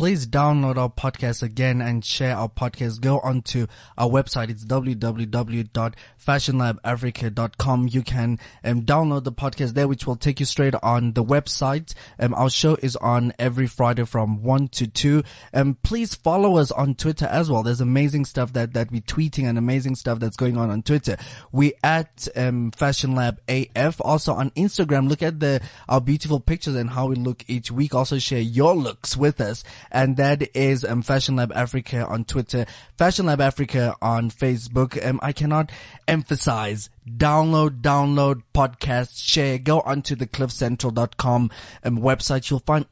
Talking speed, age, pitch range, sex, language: 170 wpm, 20-39, 120-140 Hz, male, English